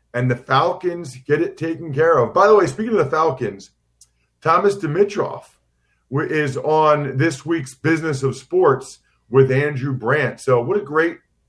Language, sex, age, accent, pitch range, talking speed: English, male, 40-59, American, 125-155 Hz, 160 wpm